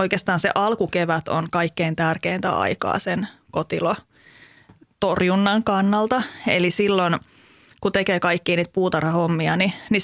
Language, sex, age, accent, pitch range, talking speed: Finnish, female, 30-49, native, 170-205 Hz, 115 wpm